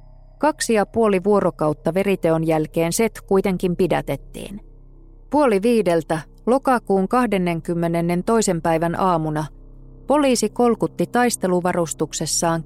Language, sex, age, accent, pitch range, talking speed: Finnish, female, 30-49, native, 165-215 Hz, 85 wpm